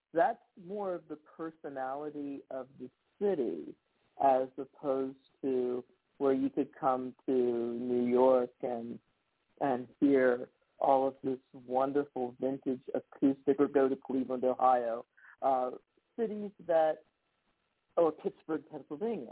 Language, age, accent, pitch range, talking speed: English, 50-69, American, 130-155 Hz, 120 wpm